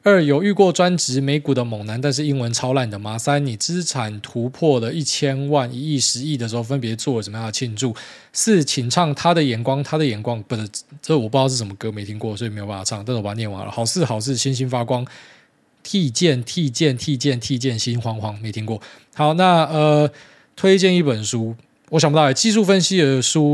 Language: Chinese